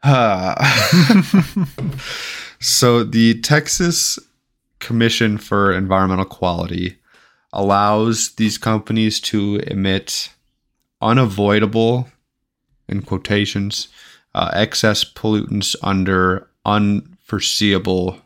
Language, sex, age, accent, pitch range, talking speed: English, male, 20-39, American, 95-115 Hz, 70 wpm